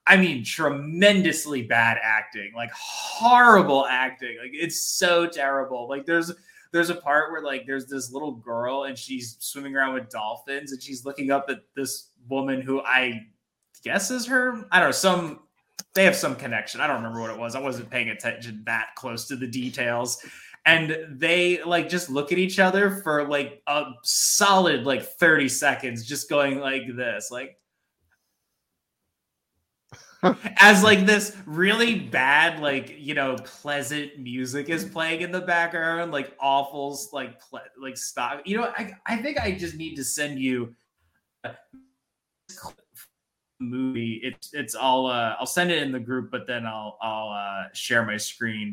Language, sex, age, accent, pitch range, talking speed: English, male, 20-39, American, 125-170 Hz, 165 wpm